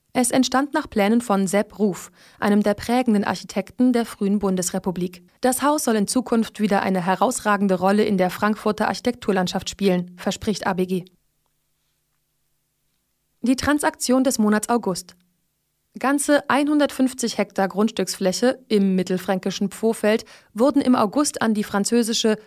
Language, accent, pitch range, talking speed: German, German, 190-235 Hz, 130 wpm